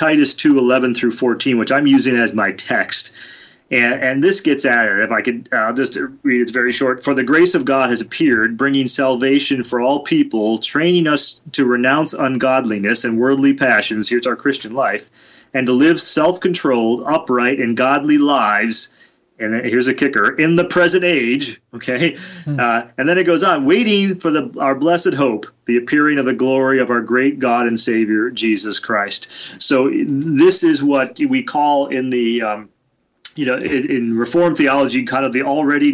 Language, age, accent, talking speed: English, 30-49, American, 190 wpm